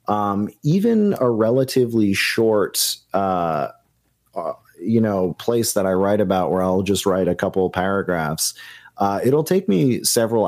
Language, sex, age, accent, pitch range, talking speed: English, male, 30-49, American, 90-110 Hz, 155 wpm